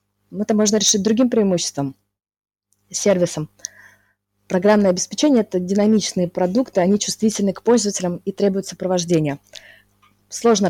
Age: 20-39